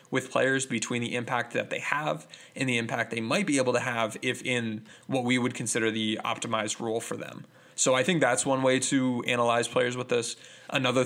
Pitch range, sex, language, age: 115-130 Hz, male, English, 20-39